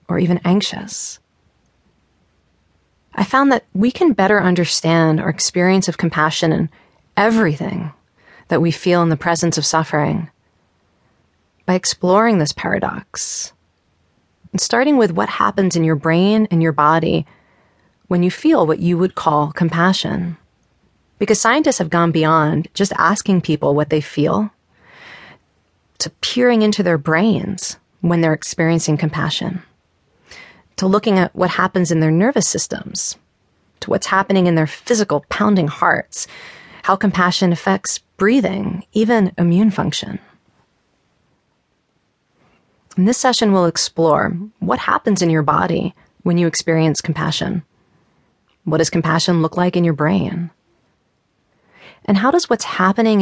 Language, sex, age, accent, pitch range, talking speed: English, female, 30-49, American, 160-195 Hz, 135 wpm